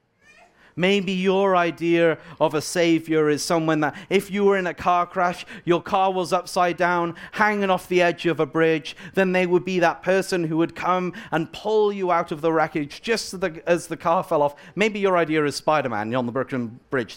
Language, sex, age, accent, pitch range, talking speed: English, male, 40-59, British, 135-185 Hz, 210 wpm